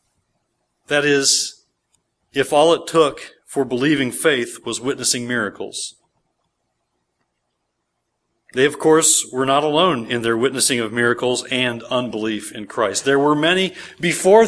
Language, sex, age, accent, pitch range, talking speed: English, male, 40-59, American, 140-200 Hz, 130 wpm